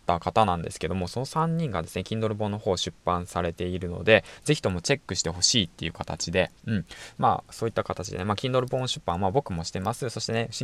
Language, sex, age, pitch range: Japanese, male, 20-39, 90-130 Hz